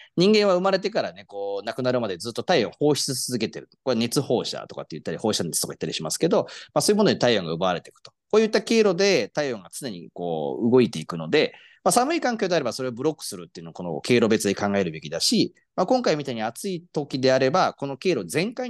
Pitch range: 120-195 Hz